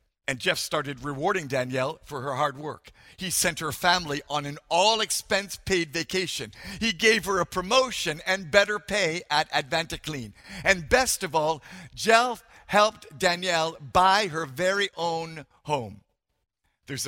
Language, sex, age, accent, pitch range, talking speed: English, male, 50-69, American, 160-215 Hz, 140 wpm